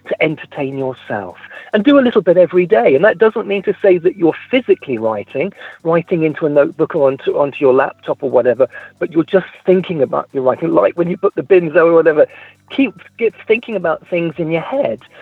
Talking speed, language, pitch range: 215 wpm, English, 160-225 Hz